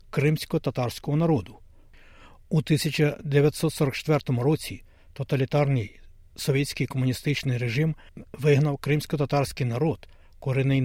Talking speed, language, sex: 70 wpm, Ukrainian, male